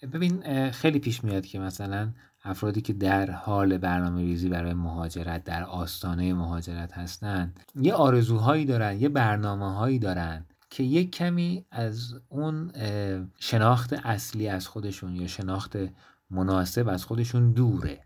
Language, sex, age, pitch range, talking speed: Persian, male, 30-49, 105-145 Hz, 135 wpm